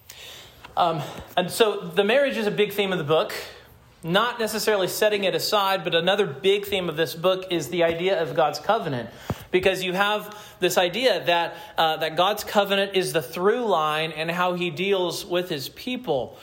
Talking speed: 185 wpm